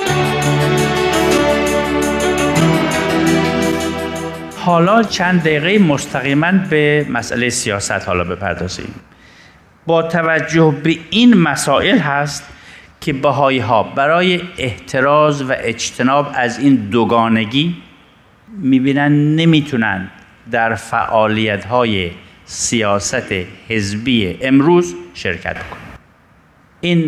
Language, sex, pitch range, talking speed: Persian, male, 110-150 Hz, 80 wpm